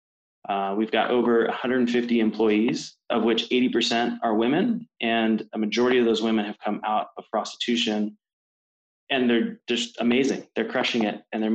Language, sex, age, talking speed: English, male, 20-39, 160 wpm